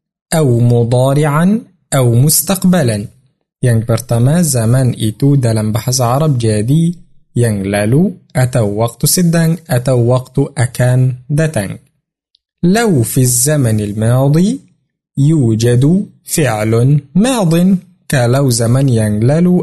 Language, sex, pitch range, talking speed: Arabic, male, 120-165 Hz, 85 wpm